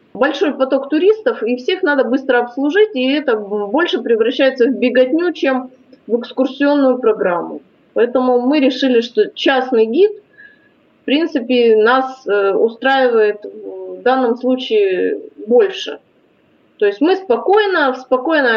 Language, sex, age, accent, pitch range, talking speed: Russian, female, 20-39, native, 225-315 Hz, 125 wpm